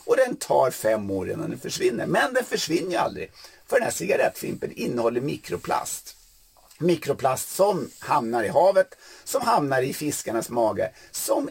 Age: 50-69